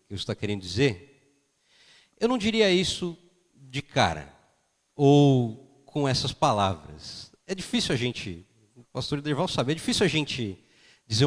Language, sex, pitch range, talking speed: Portuguese, male, 115-165 Hz, 150 wpm